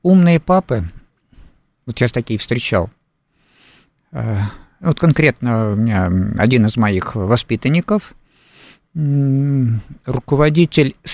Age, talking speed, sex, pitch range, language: 50-69, 80 wpm, male, 105-150 Hz, Russian